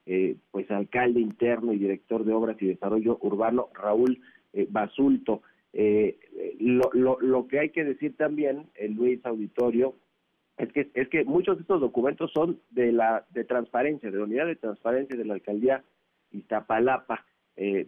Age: 40-59